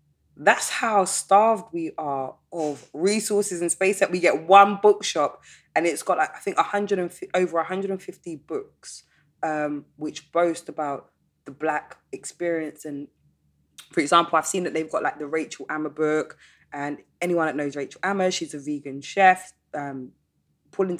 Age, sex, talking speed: 20-39, female, 155 wpm